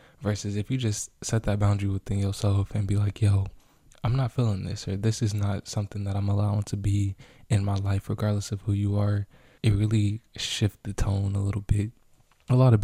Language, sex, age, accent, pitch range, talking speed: English, male, 20-39, American, 100-110 Hz, 215 wpm